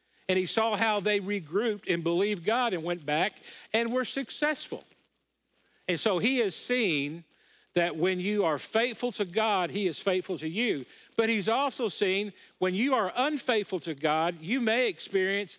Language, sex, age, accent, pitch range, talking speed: English, male, 50-69, American, 170-225 Hz, 175 wpm